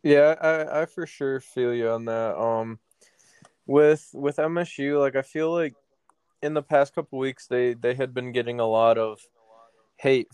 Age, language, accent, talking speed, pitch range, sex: 20-39, English, American, 185 wpm, 115-135 Hz, male